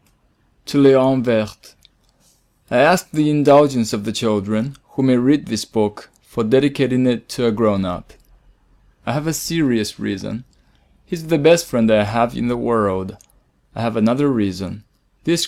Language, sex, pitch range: Chinese, male, 105-135 Hz